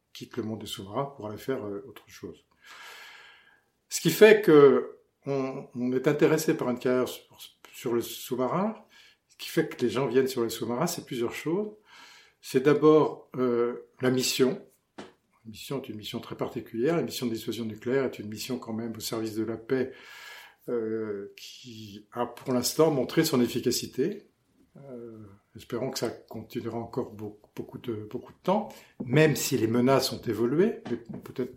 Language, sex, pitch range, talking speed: French, male, 115-160 Hz, 175 wpm